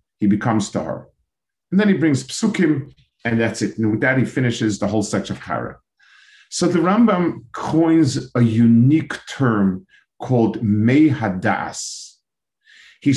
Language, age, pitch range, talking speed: English, 50-69, 105-150 Hz, 140 wpm